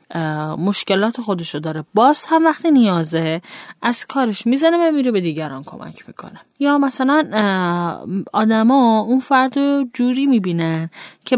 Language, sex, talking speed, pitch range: Persian, female, 125 wpm, 165-255 Hz